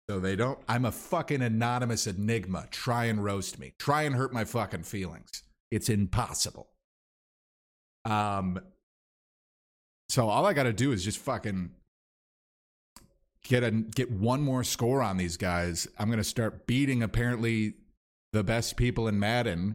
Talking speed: 150 wpm